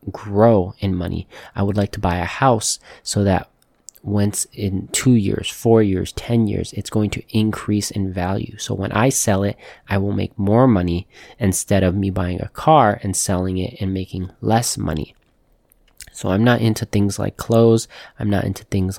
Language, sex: English, male